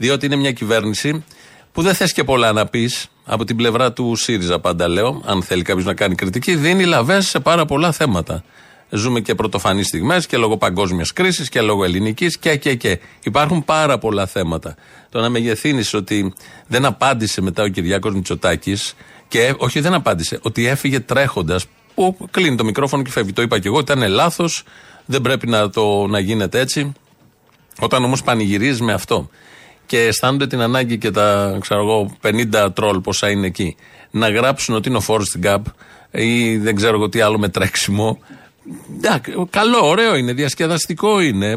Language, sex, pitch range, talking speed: Greek, male, 105-155 Hz, 175 wpm